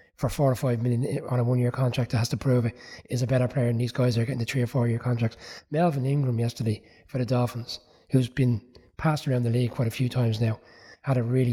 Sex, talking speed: male, 250 wpm